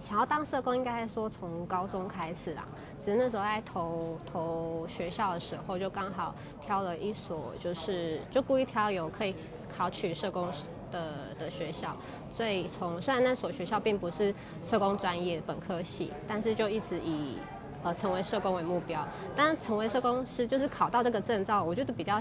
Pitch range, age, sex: 175-225 Hz, 20-39, female